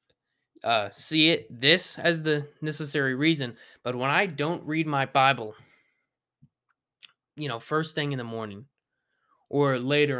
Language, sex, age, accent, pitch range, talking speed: English, male, 20-39, American, 130-160 Hz, 140 wpm